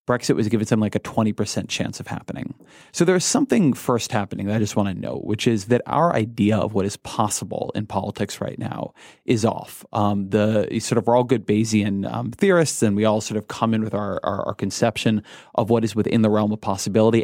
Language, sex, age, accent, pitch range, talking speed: English, male, 30-49, American, 105-120 Hz, 230 wpm